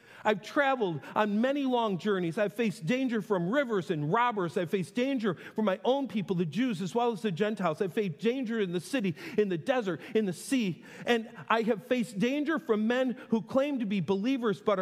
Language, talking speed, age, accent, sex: English, 210 wpm, 40-59, American, male